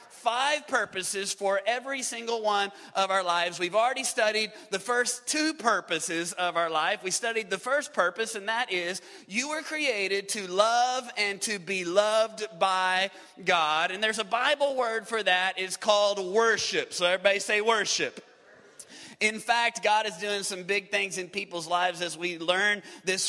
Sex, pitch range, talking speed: male, 175-215 Hz, 175 wpm